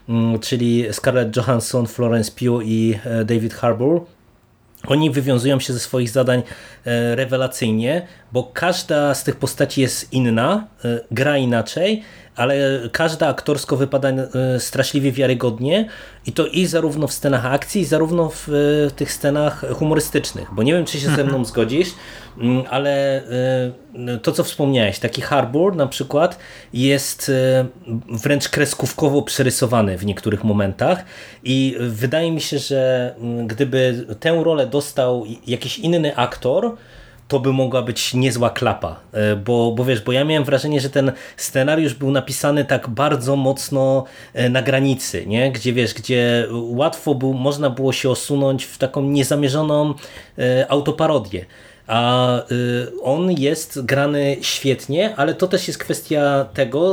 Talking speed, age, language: 135 wpm, 20-39, Polish